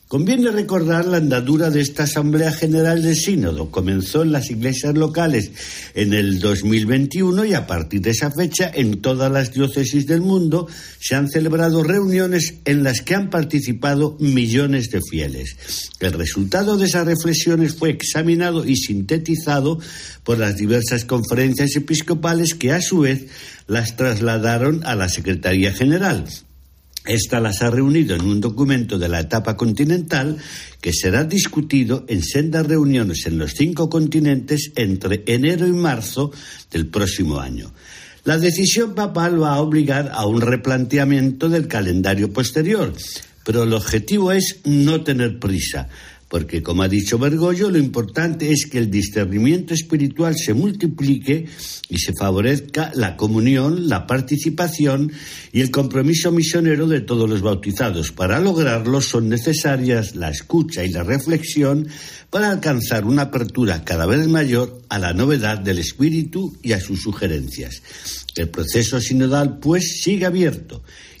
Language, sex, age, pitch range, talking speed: Spanish, male, 60-79, 105-160 Hz, 145 wpm